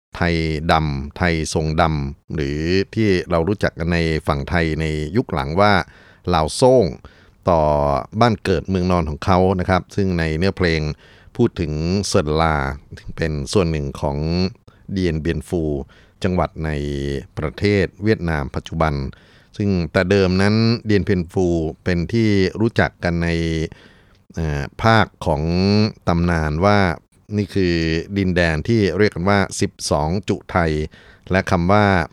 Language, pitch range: Thai, 80-100 Hz